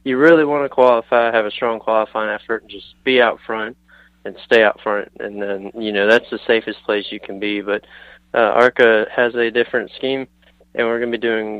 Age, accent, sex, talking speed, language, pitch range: 20-39, American, male, 220 wpm, German, 105-120 Hz